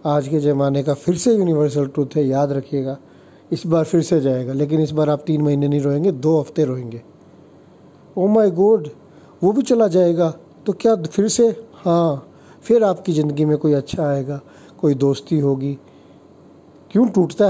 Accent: native